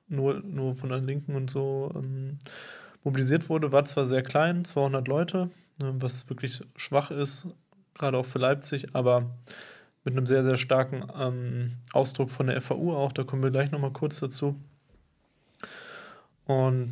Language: German